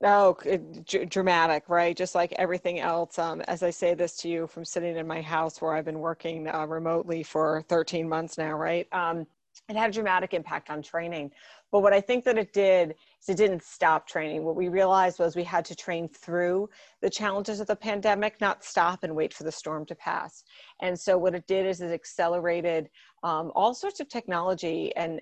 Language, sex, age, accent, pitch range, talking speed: English, female, 30-49, American, 165-190 Hz, 205 wpm